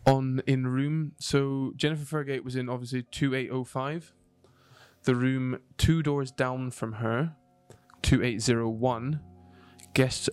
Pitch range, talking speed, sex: 115-130 Hz, 110 wpm, male